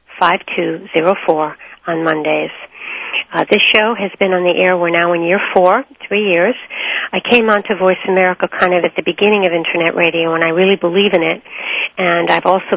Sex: female